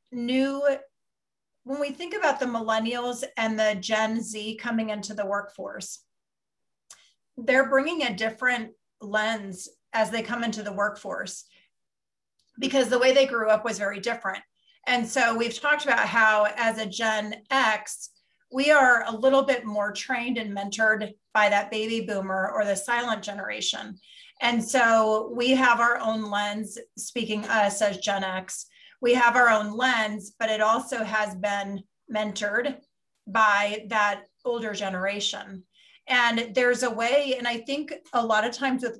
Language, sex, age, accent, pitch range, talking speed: English, female, 30-49, American, 210-245 Hz, 155 wpm